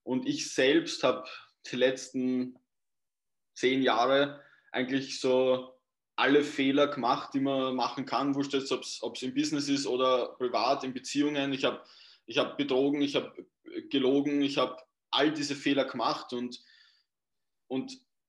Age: 20-39